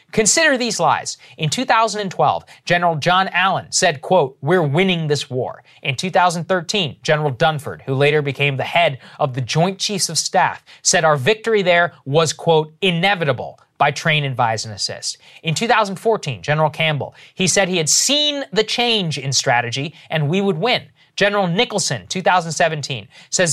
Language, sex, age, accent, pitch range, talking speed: English, male, 30-49, American, 145-210 Hz, 160 wpm